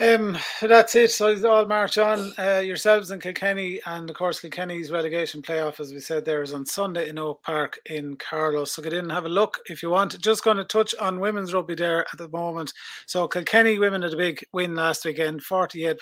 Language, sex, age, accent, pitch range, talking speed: English, male, 30-49, Irish, 150-190 Hz, 230 wpm